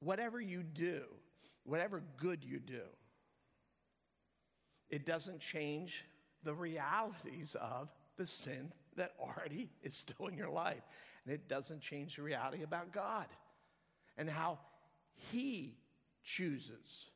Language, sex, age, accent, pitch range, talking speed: English, male, 50-69, American, 135-170 Hz, 120 wpm